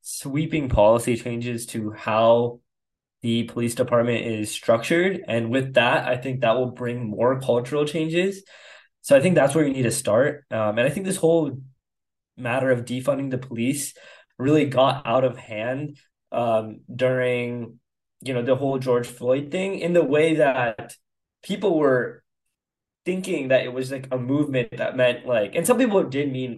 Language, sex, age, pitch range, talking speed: English, male, 10-29, 115-140 Hz, 170 wpm